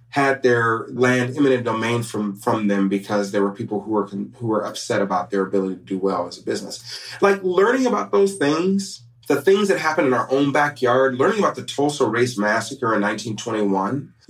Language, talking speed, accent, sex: English, 195 wpm, American, male